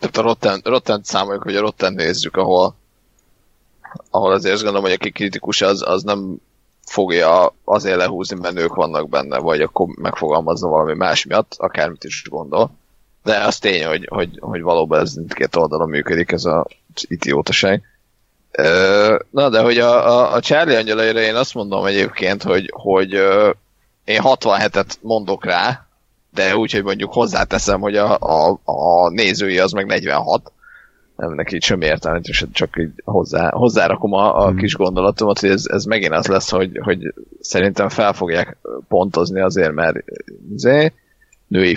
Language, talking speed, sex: Hungarian, 155 wpm, male